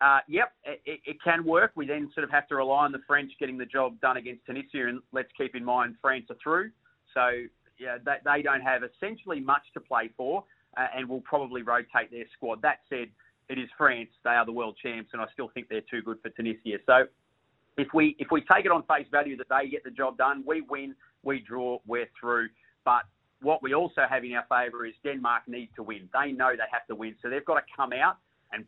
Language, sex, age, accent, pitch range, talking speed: English, male, 30-49, Australian, 120-140 Hz, 240 wpm